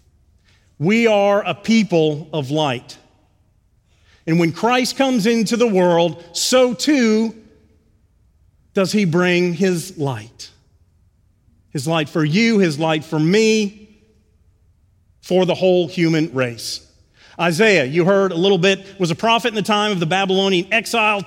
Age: 40-59